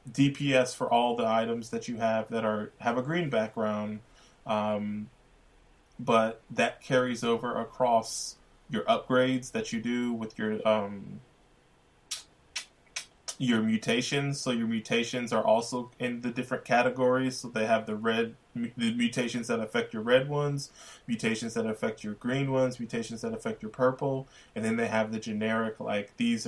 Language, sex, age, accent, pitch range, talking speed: English, male, 20-39, American, 110-130 Hz, 160 wpm